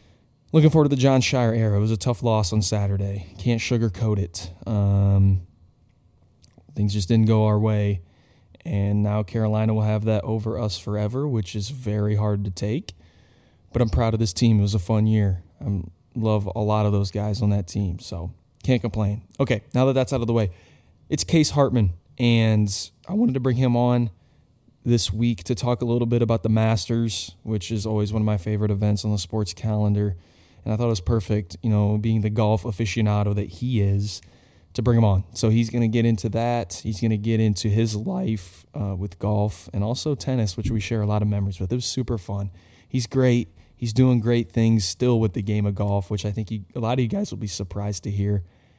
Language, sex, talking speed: English, male, 220 wpm